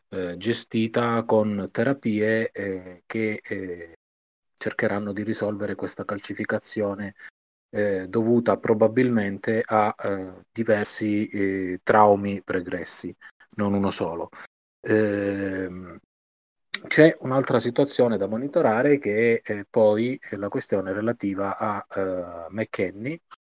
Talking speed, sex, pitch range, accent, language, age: 95 wpm, male, 95-115 Hz, native, Italian, 30-49